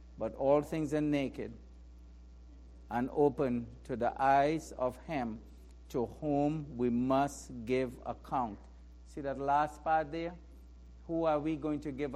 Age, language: 60-79, English